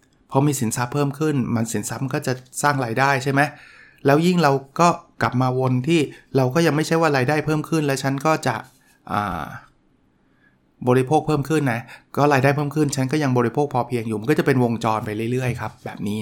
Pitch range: 115-145 Hz